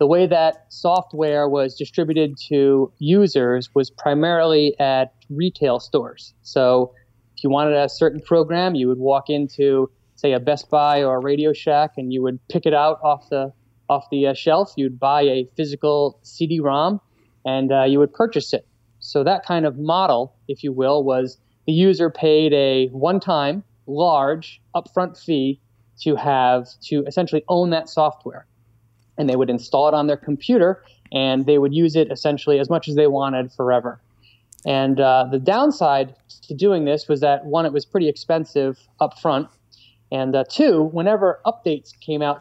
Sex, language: male, English